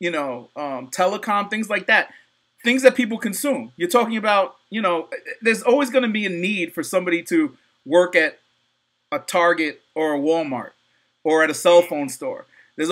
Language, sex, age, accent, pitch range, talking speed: English, male, 30-49, American, 170-220 Hz, 185 wpm